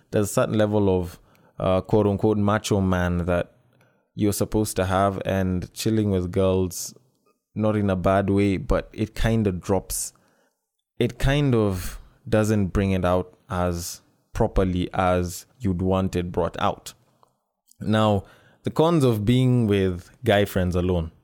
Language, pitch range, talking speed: English, 95-110 Hz, 145 wpm